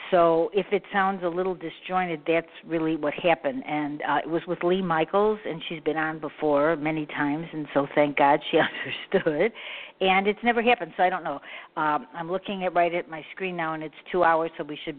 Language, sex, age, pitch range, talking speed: English, female, 50-69, 160-190 Hz, 220 wpm